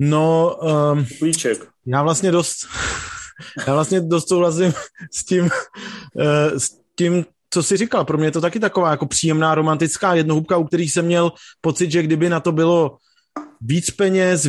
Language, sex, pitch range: Czech, male, 150-175 Hz